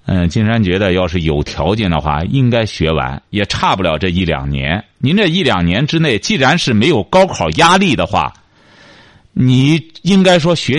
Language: Chinese